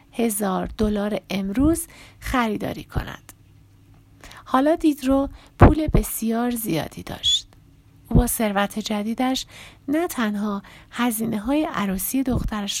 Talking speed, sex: 95 wpm, female